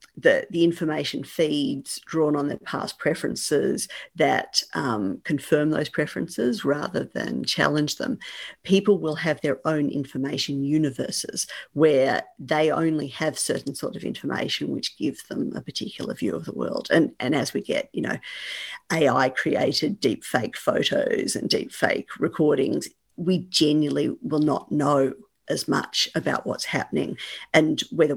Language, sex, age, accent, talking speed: English, female, 50-69, Australian, 145 wpm